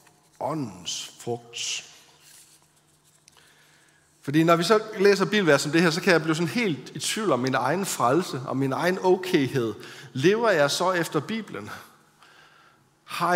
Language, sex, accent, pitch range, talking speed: Danish, male, native, 130-170 Hz, 150 wpm